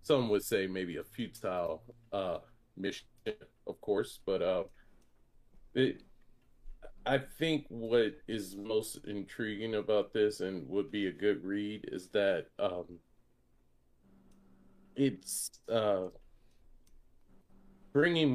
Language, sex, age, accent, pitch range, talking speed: English, male, 30-49, American, 95-130 Hz, 110 wpm